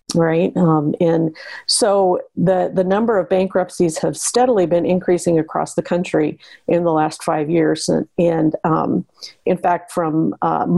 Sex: female